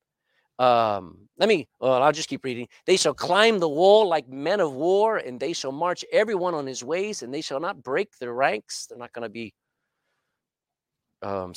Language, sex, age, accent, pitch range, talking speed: English, male, 50-69, American, 145-210 Hz, 190 wpm